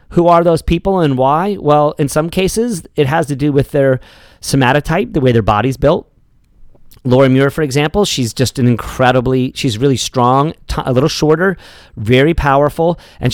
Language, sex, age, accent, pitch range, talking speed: English, male, 40-59, American, 120-155 Hz, 180 wpm